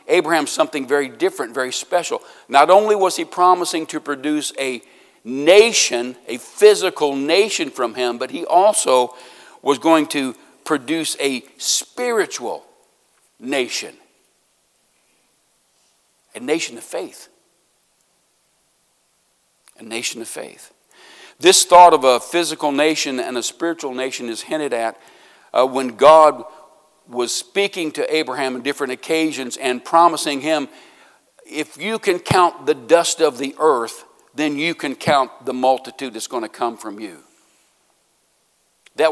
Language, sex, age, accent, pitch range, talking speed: English, male, 60-79, American, 130-185 Hz, 130 wpm